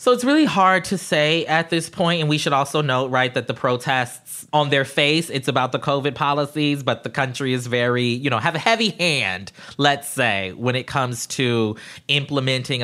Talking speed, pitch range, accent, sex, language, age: 205 wpm, 115-150 Hz, American, male, English, 20-39